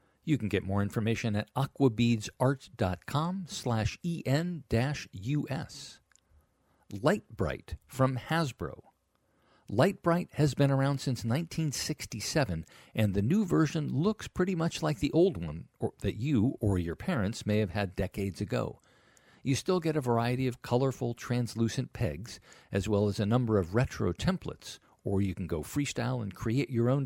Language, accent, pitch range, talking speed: English, American, 110-145 Hz, 140 wpm